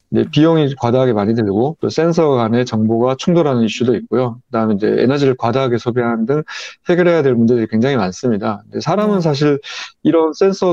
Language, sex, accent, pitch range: Korean, male, native, 115-150 Hz